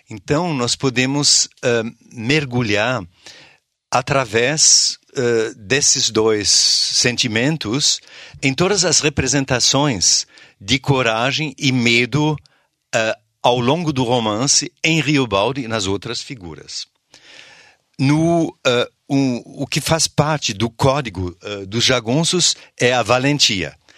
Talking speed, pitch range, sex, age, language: 110 wpm, 110-140 Hz, male, 50-69, Portuguese